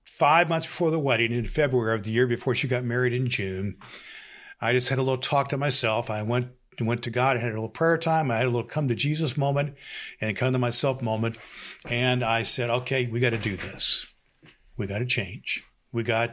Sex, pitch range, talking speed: male, 115-130 Hz, 230 wpm